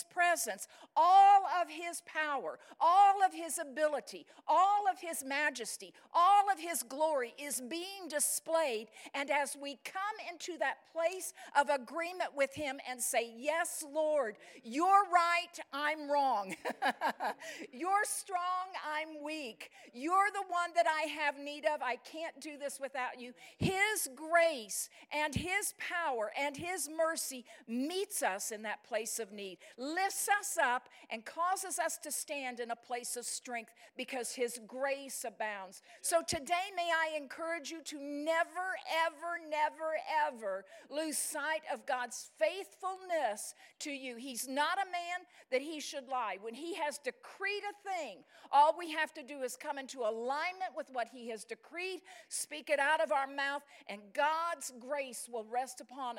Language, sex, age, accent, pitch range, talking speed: English, female, 50-69, American, 260-345 Hz, 155 wpm